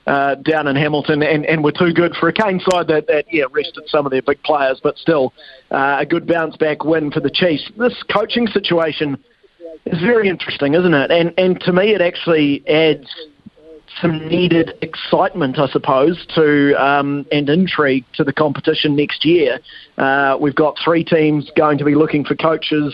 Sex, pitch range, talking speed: male, 150-170 Hz, 190 wpm